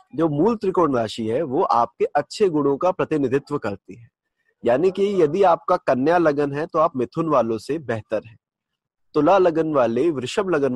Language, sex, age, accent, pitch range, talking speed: Hindi, male, 30-49, native, 115-165 Hz, 180 wpm